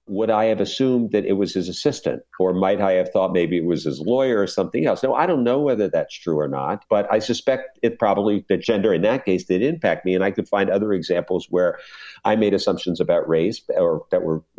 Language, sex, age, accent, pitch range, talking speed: English, male, 50-69, American, 90-110 Hz, 245 wpm